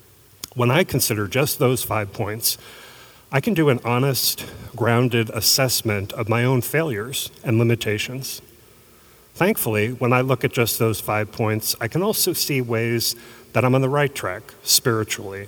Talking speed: 160 wpm